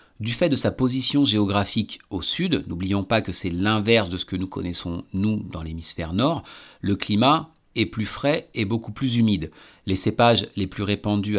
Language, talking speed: French, 190 wpm